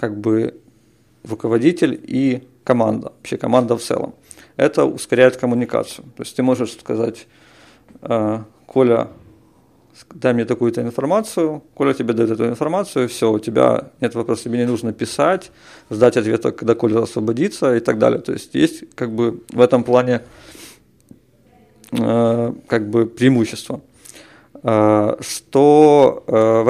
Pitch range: 115-130 Hz